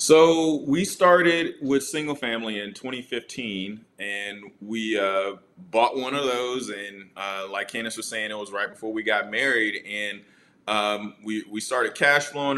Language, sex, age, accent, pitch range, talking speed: English, male, 20-39, American, 105-140 Hz, 165 wpm